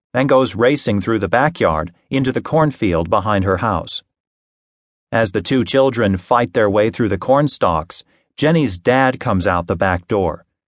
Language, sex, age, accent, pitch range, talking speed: English, male, 40-59, American, 95-125 Hz, 165 wpm